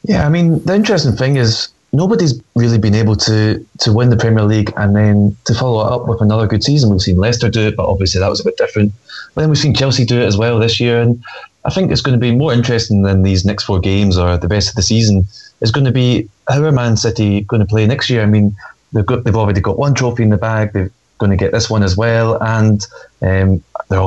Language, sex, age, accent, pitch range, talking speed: English, male, 20-39, British, 100-120 Hz, 260 wpm